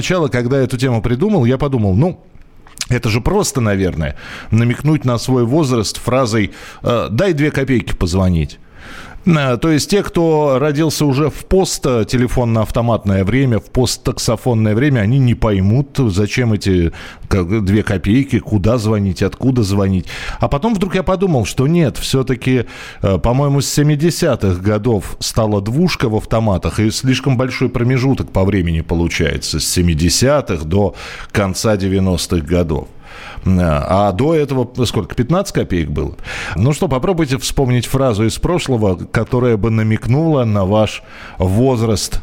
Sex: male